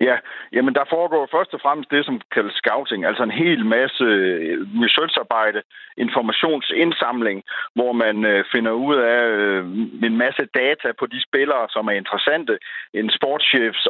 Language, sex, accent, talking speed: Danish, male, native, 140 wpm